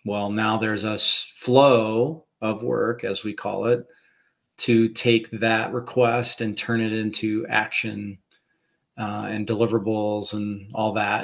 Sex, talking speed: male, 140 wpm